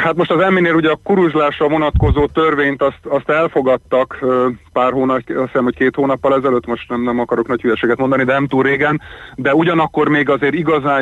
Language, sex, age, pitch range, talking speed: Hungarian, male, 30-49, 120-140 Hz, 195 wpm